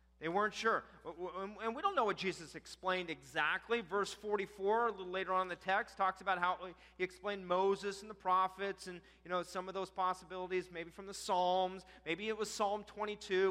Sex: male